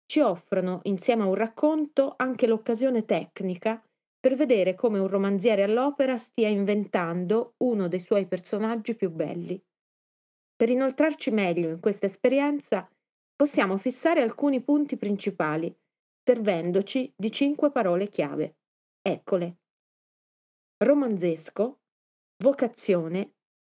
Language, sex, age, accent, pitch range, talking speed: Italian, female, 30-49, native, 185-250 Hz, 105 wpm